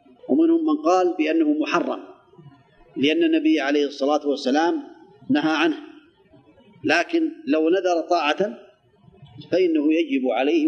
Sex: male